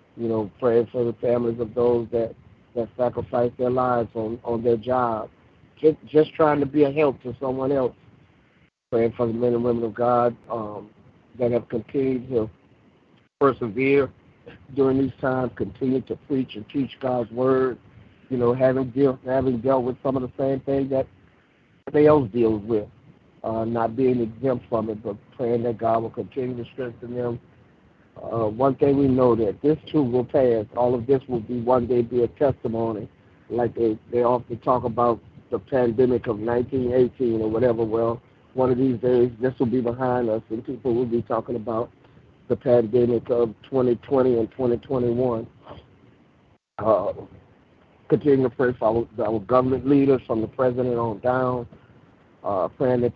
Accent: American